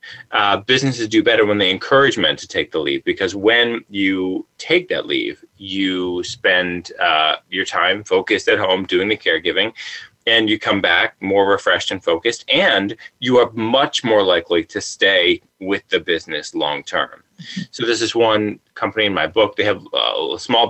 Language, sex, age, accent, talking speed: English, male, 20-39, American, 180 wpm